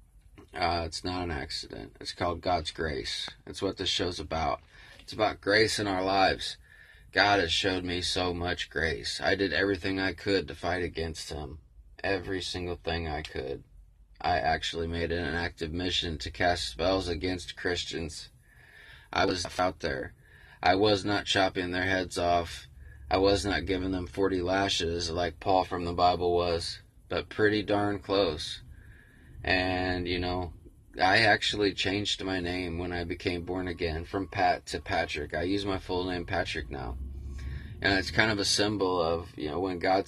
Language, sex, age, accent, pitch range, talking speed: English, male, 20-39, American, 85-95 Hz, 175 wpm